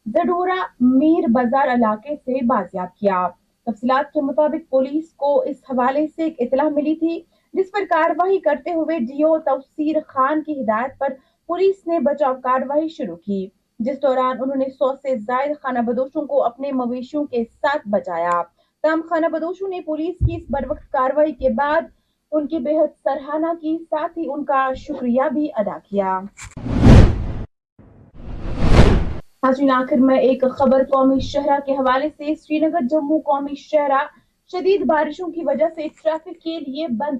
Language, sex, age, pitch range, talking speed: Urdu, female, 30-49, 255-315 Hz, 160 wpm